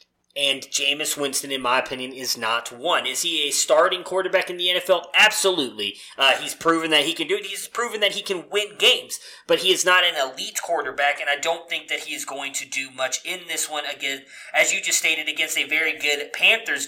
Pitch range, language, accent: 145-185 Hz, English, American